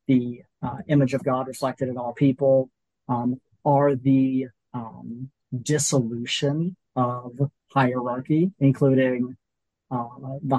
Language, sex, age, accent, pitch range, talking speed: English, male, 30-49, American, 125-140 Hz, 110 wpm